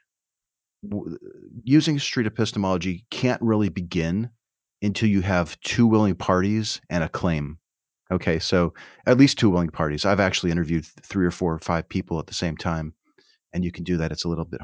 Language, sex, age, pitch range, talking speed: English, male, 40-59, 85-100 Hz, 180 wpm